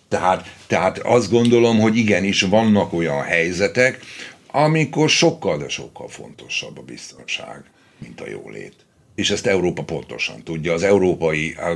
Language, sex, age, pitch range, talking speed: Hungarian, male, 60-79, 85-120 Hz, 135 wpm